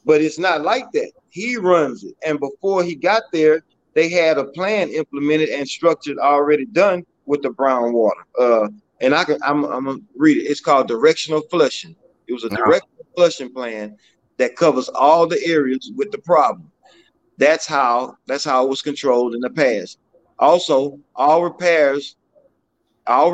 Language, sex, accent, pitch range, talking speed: English, male, American, 135-180 Hz, 165 wpm